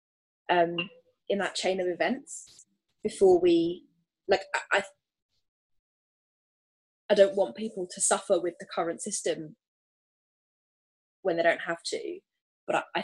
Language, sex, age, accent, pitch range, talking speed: English, female, 20-39, British, 165-205 Hz, 125 wpm